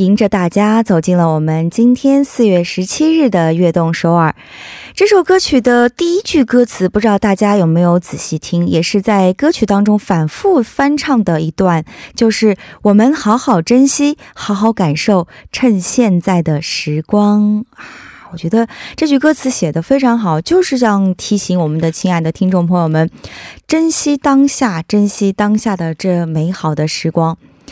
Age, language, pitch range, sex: 20-39, Korean, 175-250 Hz, female